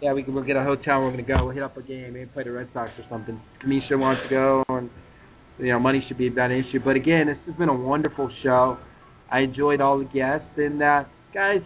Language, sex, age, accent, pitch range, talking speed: English, male, 30-49, American, 125-140 Hz, 260 wpm